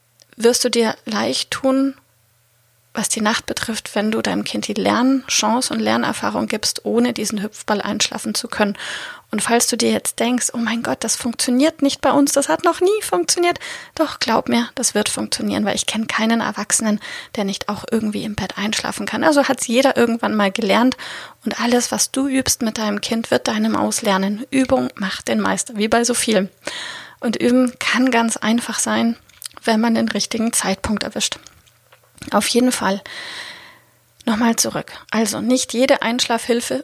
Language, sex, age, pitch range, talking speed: German, female, 30-49, 215-270 Hz, 180 wpm